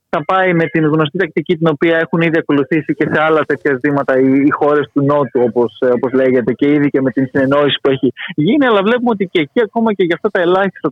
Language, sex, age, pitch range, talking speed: Greek, male, 20-39, 145-190 Hz, 235 wpm